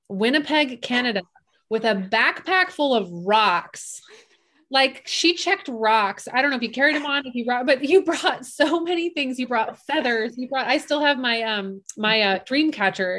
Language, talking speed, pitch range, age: English, 195 wpm, 215-285 Hz, 30-49